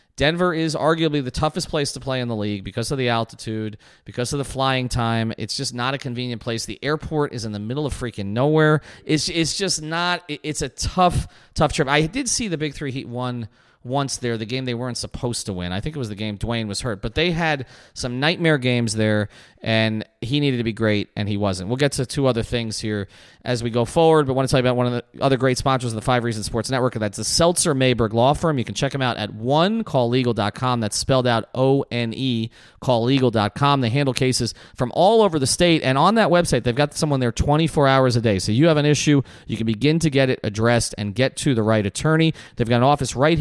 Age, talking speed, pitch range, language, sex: 30-49, 245 wpm, 110-145 Hz, English, male